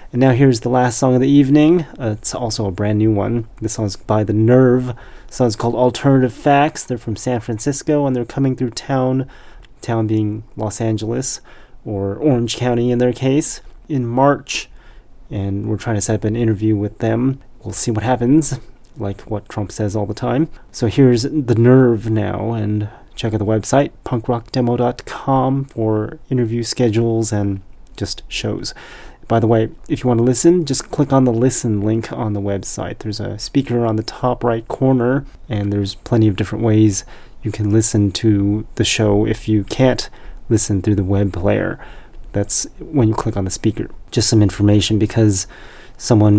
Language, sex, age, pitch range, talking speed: English, male, 30-49, 105-125 Hz, 185 wpm